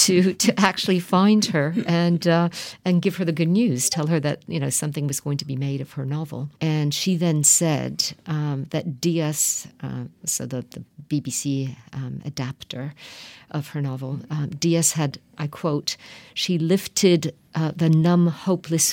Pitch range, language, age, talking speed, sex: 145-170 Hz, French, 50-69, 175 wpm, female